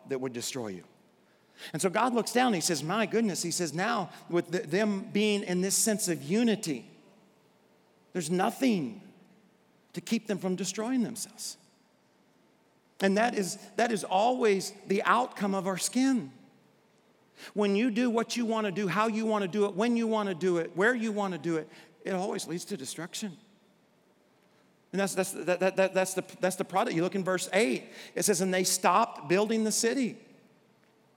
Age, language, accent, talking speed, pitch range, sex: 50-69, English, American, 190 wpm, 150-215 Hz, male